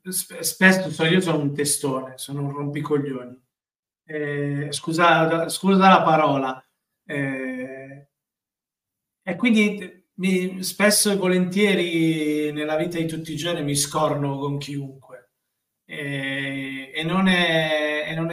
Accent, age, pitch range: native, 40-59, 140-170 Hz